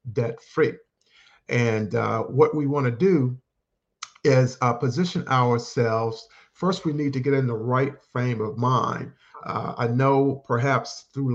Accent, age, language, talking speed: American, 50-69, English, 155 wpm